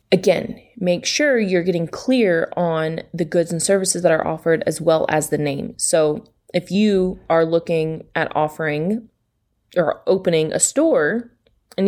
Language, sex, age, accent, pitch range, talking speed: English, female, 20-39, American, 155-180 Hz, 155 wpm